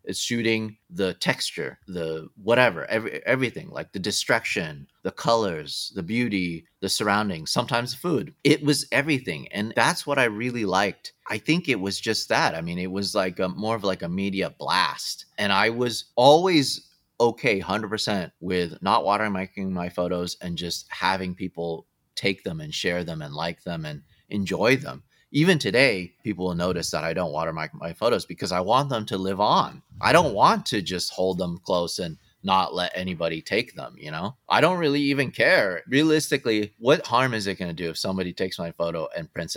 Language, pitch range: English, 90-125 Hz